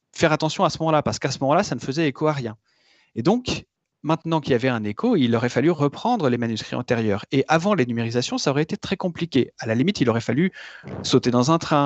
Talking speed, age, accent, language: 250 wpm, 30-49, French, French